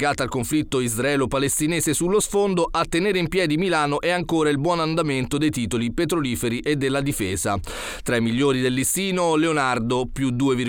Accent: native